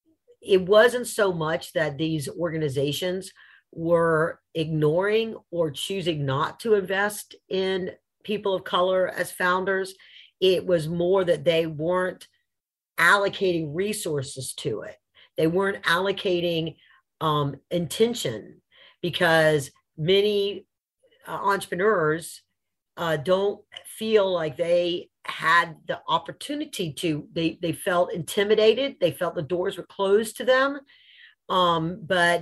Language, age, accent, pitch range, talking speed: English, 50-69, American, 165-205 Hz, 115 wpm